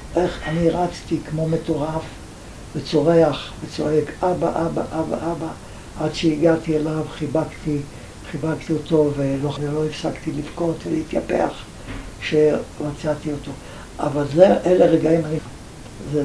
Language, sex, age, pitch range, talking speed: Hebrew, male, 60-79, 145-170 Hz, 110 wpm